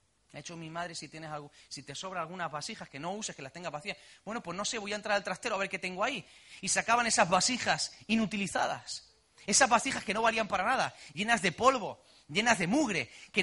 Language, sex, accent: Spanish, male, Spanish